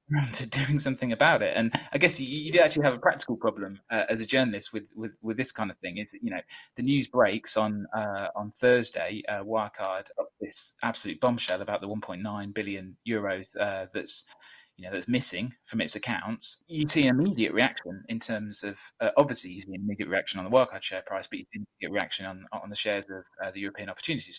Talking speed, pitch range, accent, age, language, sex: 225 wpm, 105-135 Hz, British, 20-39, English, male